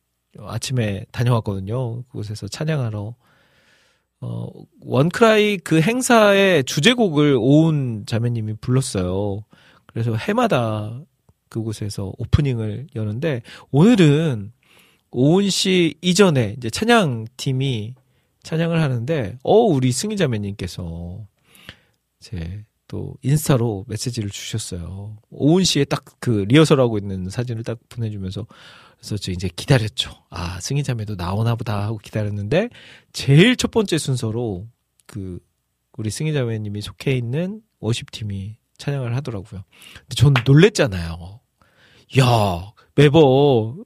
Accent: native